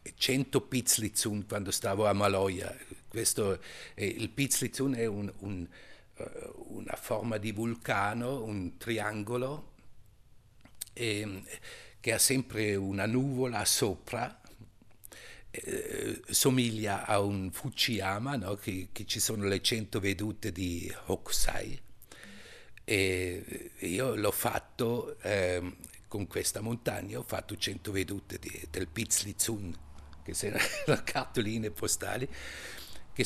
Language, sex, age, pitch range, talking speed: Italian, male, 60-79, 100-125 Hz, 110 wpm